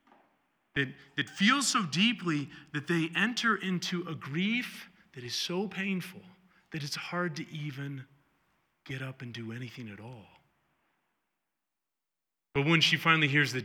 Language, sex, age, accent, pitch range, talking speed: English, male, 30-49, American, 145-205 Hz, 150 wpm